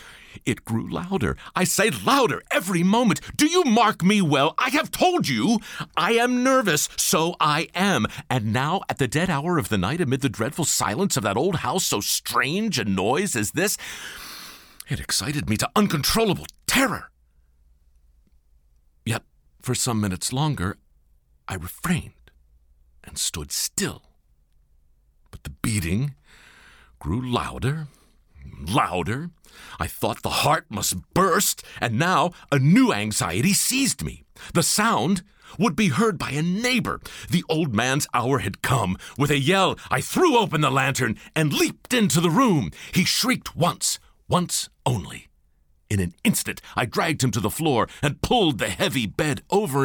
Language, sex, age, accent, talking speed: English, male, 50-69, American, 155 wpm